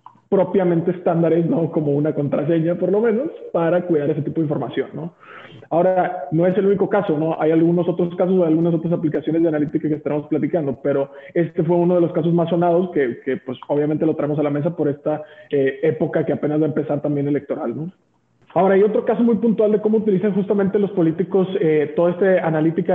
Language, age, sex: Spanish, 20-39, male